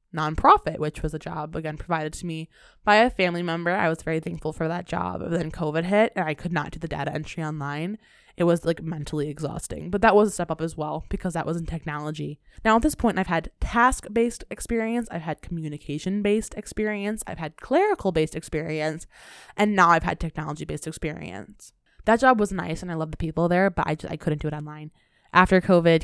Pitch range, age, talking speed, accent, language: 155-195 Hz, 20-39, 215 wpm, American, English